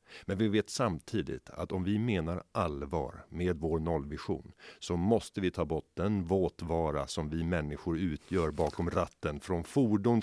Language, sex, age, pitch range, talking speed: Swedish, male, 50-69, 80-100 Hz, 160 wpm